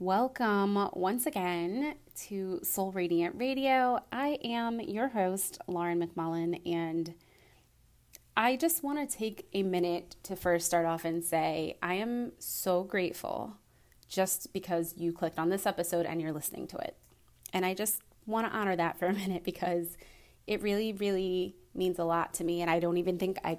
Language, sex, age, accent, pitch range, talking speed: English, female, 20-39, American, 175-230 Hz, 175 wpm